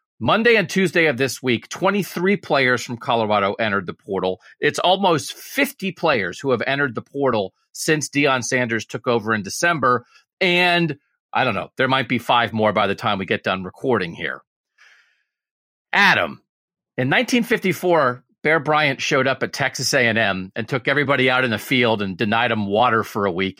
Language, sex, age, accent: English, male, 40-59, American